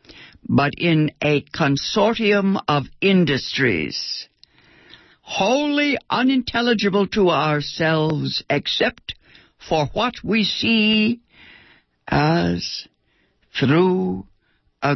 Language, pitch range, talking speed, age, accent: English, 135-210 Hz, 70 wpm, 60-79, American